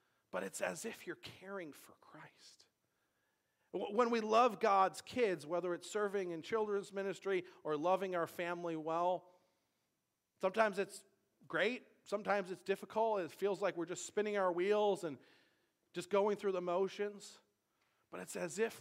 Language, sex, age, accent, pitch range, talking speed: English, male, 40-59, American, 155-200 Hz, 155 wpm